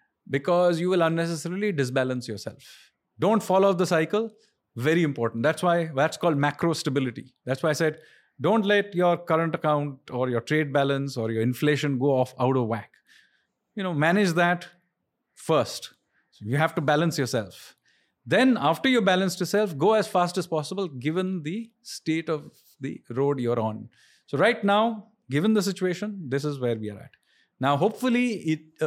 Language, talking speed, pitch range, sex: English, 175 wpm, 135-180 Hz, male